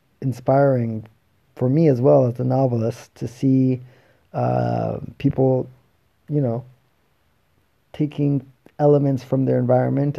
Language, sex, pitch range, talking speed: English, male, 110-135 Hz, 110 wpm